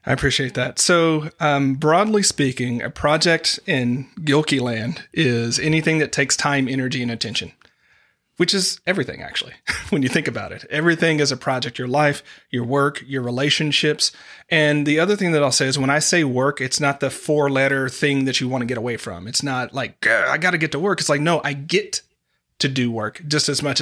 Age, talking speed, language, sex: 40-59, 210 wpm, English, male